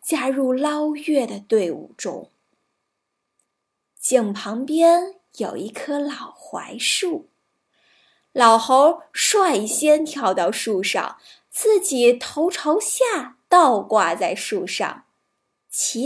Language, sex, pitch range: Chinese, female, 240-330 Hz